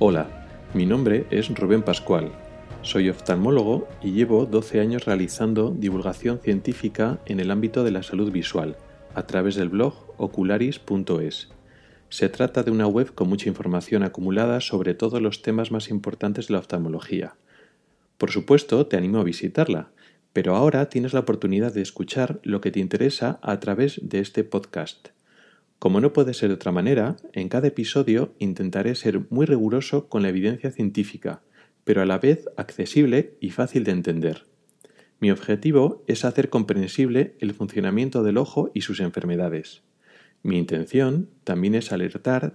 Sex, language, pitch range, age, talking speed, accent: male, Spanish, 95-125 Hz, 30-49, 155 wpm, Spanish